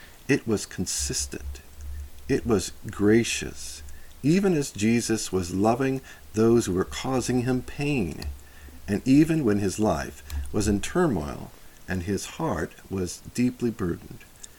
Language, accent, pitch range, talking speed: English, American, 85-130 Hz, 130 wpm